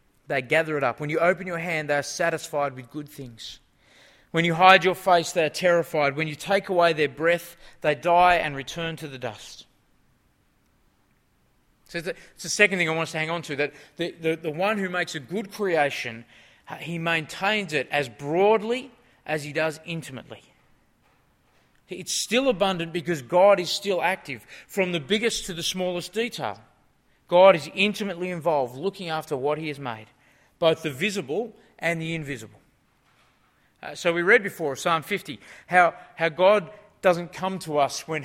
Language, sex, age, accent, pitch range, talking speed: English, male, 30-49, Australian, 150-195 Hz, 175 wpm